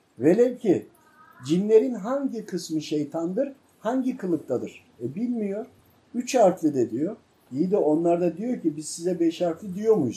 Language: Turkish